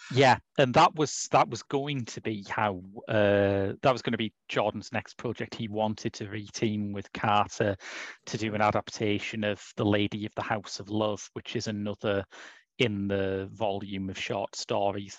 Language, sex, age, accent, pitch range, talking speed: English, male, 30-49, British, 100-115 Hz, 180 wpm